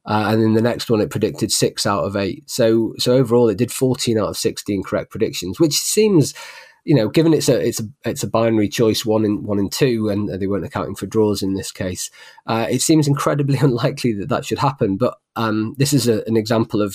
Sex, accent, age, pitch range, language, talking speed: male, British, 20-39, 110-135 Hz, English, 235 wpm